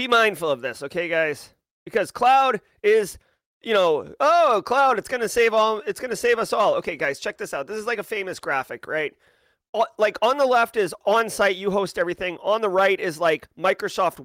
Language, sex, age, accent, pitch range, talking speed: English, male, 30-49, American, 185-235 Hz, 210 wpm